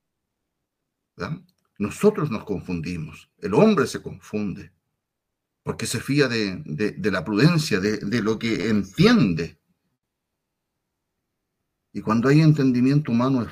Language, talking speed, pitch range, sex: Spanish, 110 wpm, 100-145 Hz, male